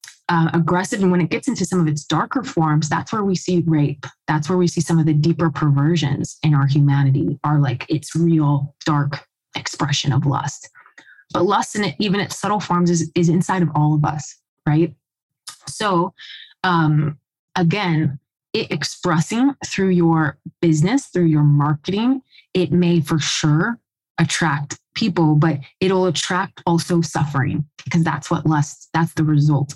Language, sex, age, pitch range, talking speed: English, female, 20-39, 150-175 Hz, 165 wpm